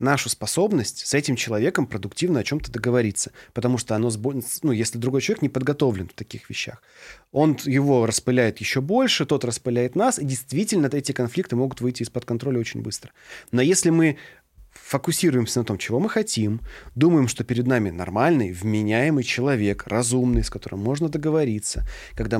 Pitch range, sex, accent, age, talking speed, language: 115-140 Hz, male, native, 30-49, 165 wpm, Russian